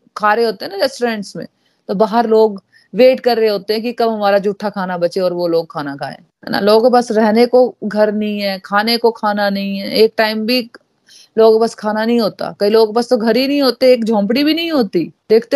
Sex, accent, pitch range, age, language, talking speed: female, native, 190-230 Hz, 30-49, Hindi, 235 wpm